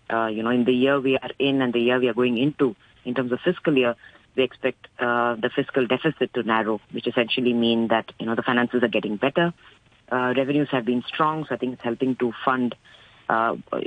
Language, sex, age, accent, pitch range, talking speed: English, female, 30-49, Indian, 120-140 Hz, 230 wpm